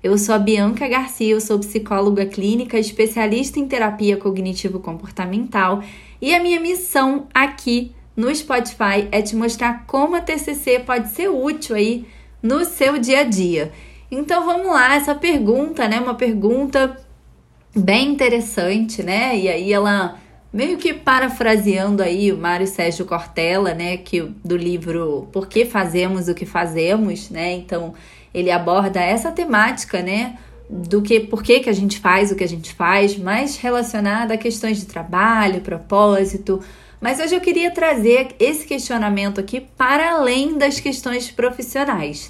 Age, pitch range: 20-39, 195-260 Hz